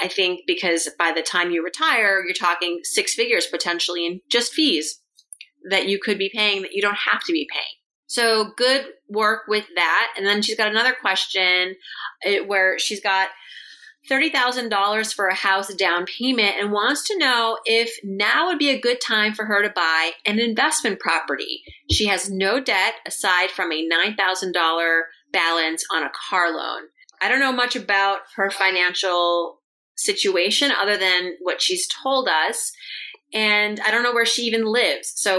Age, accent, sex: 30-49, American, female